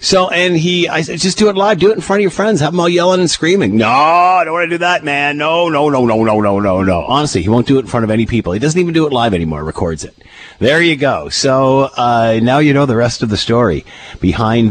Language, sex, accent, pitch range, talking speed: English, male, American, 105-170 Hz, 290 wpm